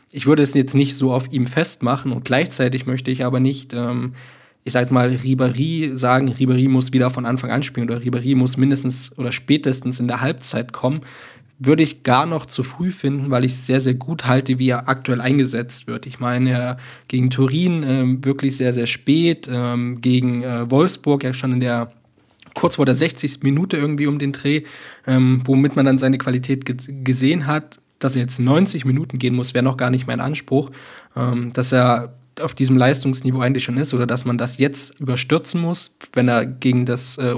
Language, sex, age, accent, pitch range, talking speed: German, male, 20-39, German, 125-140 Hz, 200 wpm